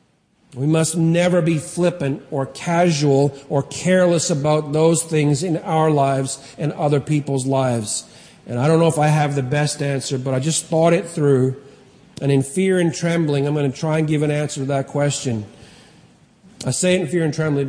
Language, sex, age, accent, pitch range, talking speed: English, male, 40-59, American, 140-185 Hz, 195 wpm